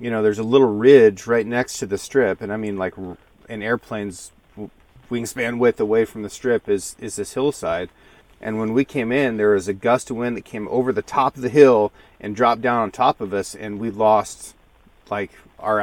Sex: male